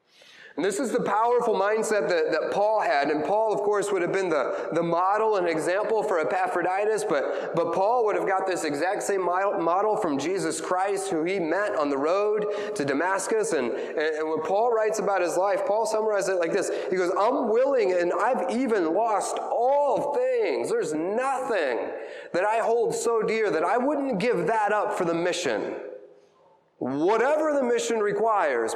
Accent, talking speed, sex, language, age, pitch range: American, 185 wpm, male, English, 30-49, 175-275 Hz